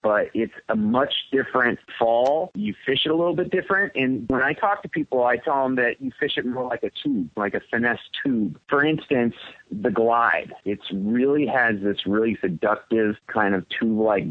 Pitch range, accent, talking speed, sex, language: 110-150 Hz, American, 195 wpm, male, English